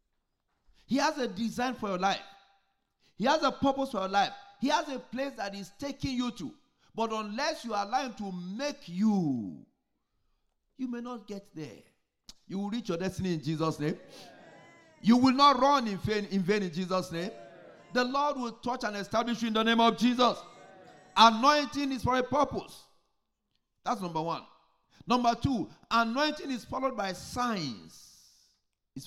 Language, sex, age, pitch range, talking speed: English, male, 50-69, 195-265 Hz, 170 wpm